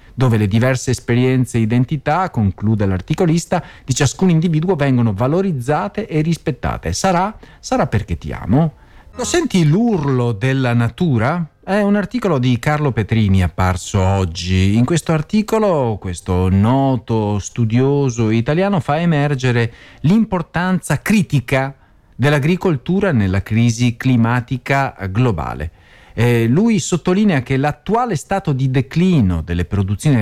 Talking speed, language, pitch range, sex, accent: 115 wpm, Italian, 110-170 Hz, male, native